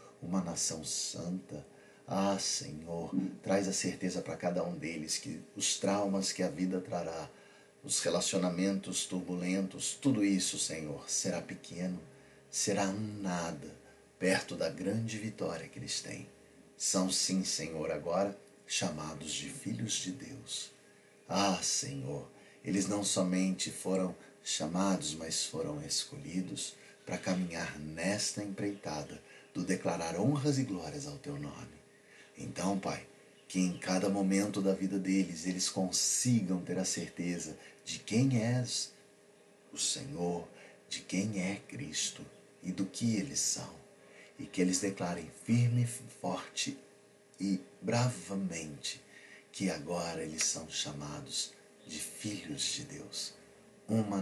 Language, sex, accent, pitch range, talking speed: Portuguese, male, Brazilian, 90-100 Hz, 125 wpm